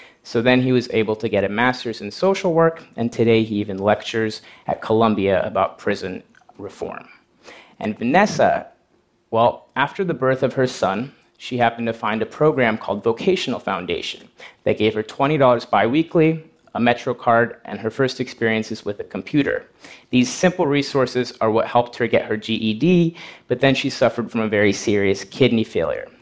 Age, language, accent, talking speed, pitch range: 30-49, English, American, 175 wpm, 110-130 Hz